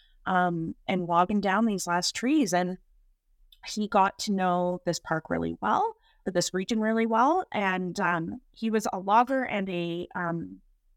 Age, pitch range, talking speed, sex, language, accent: 30-49, 170-215 Hz, 160 wpm, female, English, American